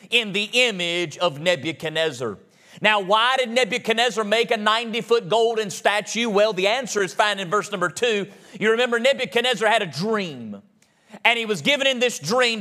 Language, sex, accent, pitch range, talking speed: English, male, American, 200-245 Hz, 170 wpm